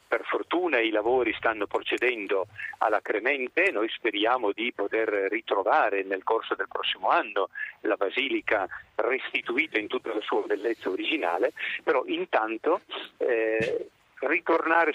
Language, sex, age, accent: Italian, male, 50-69, native